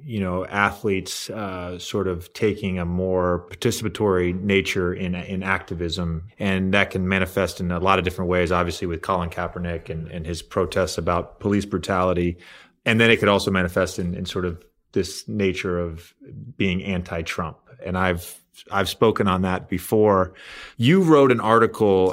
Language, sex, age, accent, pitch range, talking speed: English, male, 30-49, American, 90-105 Hz, 165 wpm